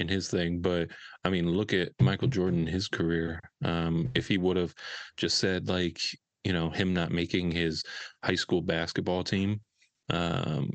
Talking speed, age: 175 wpm, 20-39